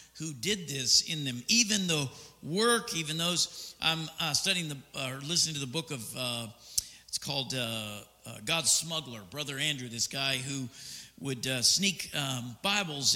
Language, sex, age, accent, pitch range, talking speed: English, male, 50-69, American, 125-165 Hz, 175 wpm